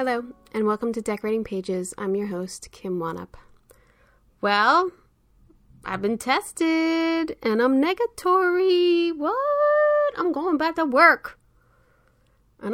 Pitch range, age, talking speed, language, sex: 180-270 Hz, 20-39, 120 wpm, English, female